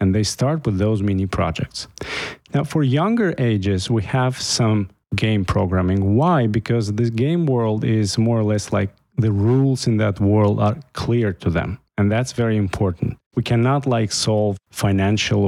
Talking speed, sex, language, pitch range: 170 wpm, male, English, 100-125 Hz